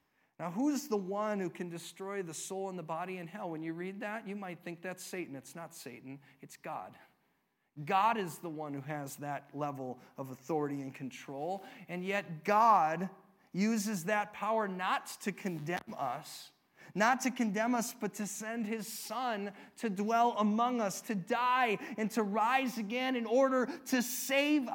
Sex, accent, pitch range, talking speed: male, American, 185-260 Hz, 175 wpm